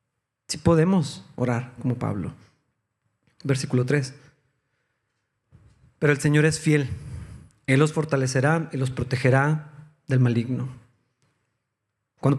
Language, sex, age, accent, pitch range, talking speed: Spanish, male, 40-59, Mexican, 130-160 Hz, 95 wpm